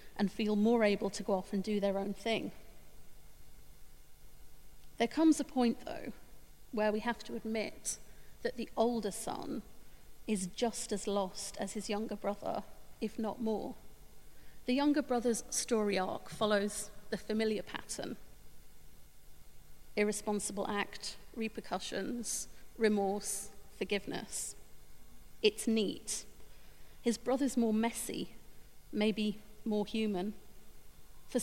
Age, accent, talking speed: 40-59, British, 115 wpm